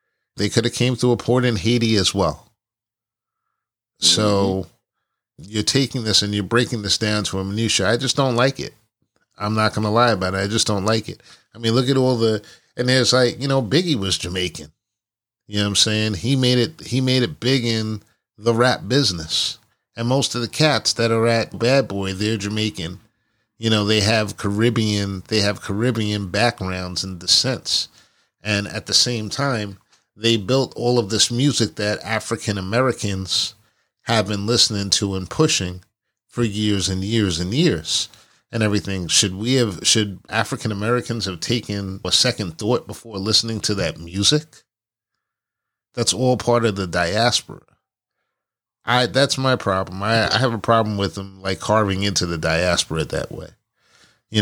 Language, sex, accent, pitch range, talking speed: English, male, American, 100-120 Hz, 180 wpm